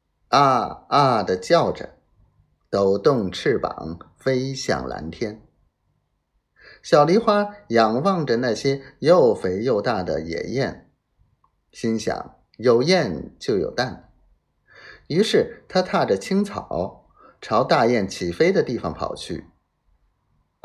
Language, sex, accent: Chinese, male, native